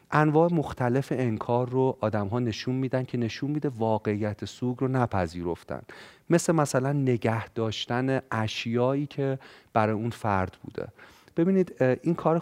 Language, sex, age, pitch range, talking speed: Persian, male, 40-59, 105-140 Hz, 135 wpm